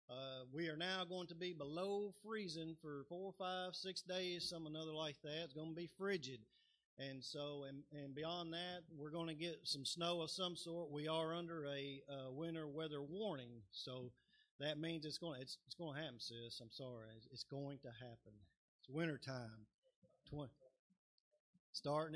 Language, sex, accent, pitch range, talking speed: English, male, American, 140-170 Hz, 185 wpm